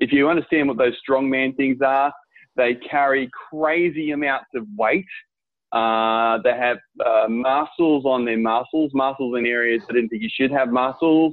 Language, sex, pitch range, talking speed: English, male, 115-135 Hz, 175 wpm